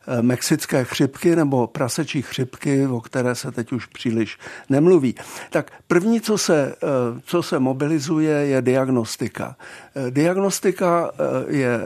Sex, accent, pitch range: male, native, 130-160 Hz